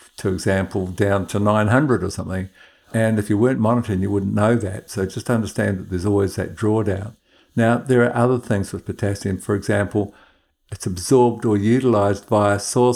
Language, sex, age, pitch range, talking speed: English, male, 60-79, 100-115 Hz, 180 wpm